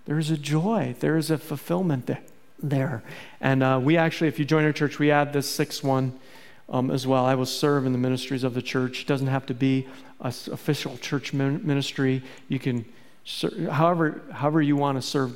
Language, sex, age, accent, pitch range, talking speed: English, male, 40-59, American, 130-155 Hz, 205 wpm